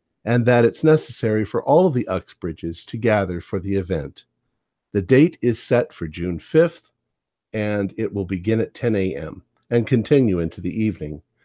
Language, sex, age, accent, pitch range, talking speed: English, male, 50-69, American, 95-130 Hz, 175 wpm